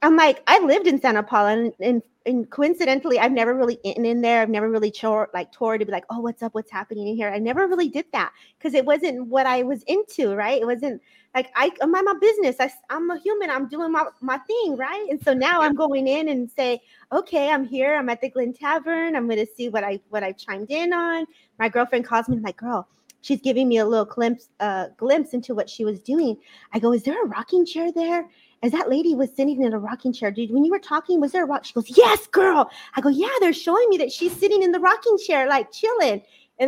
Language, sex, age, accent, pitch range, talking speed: English, female, 30-49, American, 220-300 Hz, 255 wpm